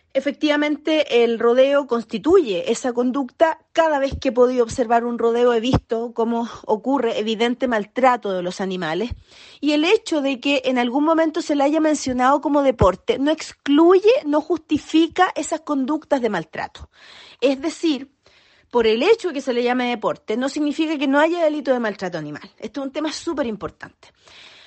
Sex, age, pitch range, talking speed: female, 40-59, 245-310 Hz, 175 wpm